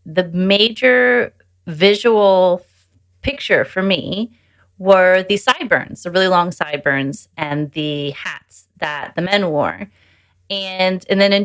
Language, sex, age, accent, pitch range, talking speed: English, female, 30-49, American, 155-190 Hz, 125 wpm